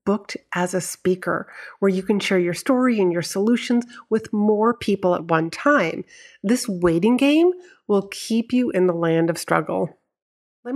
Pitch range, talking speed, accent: 175-230 Hz, 175 wpm, American